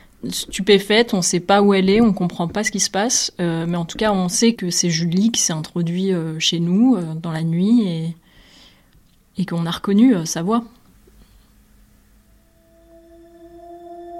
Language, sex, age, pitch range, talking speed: French, female, 20-39, 170-225 Hz, 185 wpm